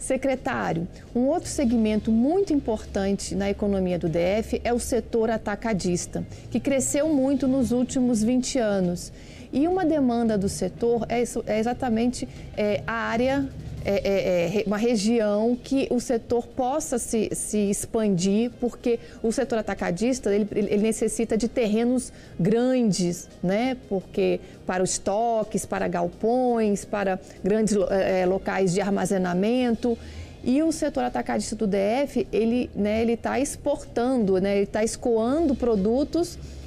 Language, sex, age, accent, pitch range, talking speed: Portuguese, female, 40-59, Brazilian, 205-255 Hz, 135 wpm